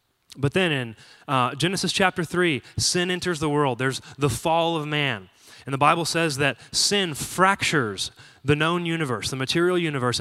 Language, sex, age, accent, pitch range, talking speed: English, male, 20-39, American, 135-170 Hz, 170 wpm